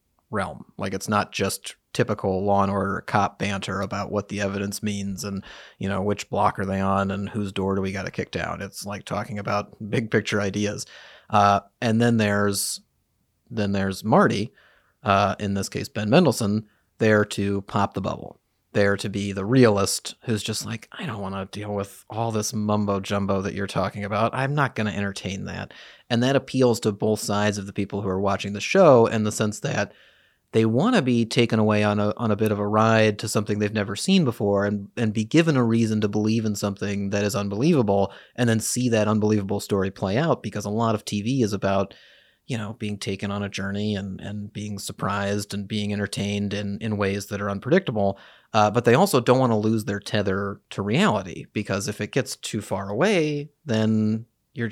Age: 30-49